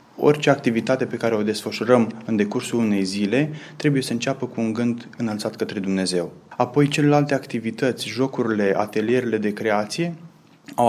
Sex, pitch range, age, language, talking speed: male, 115-135 Hz, 20-39, Romanian, 150 wpm